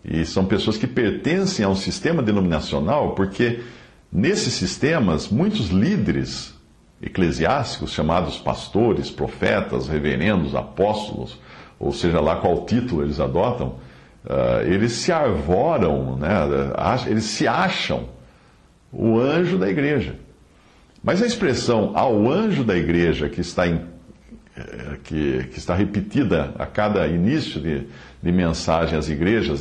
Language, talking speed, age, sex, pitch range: English, 120 wpm, 60-79, male, 75-110 Hz